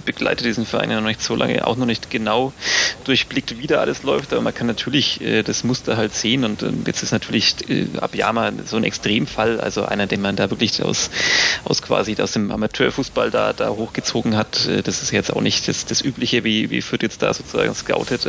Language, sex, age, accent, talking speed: German, male, 30-49, German, 225 wpm